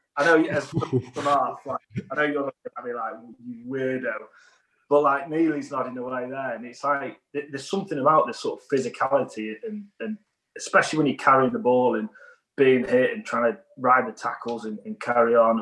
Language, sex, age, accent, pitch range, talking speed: English, male, 30-49, British, 120-165 Hz, 210 wpm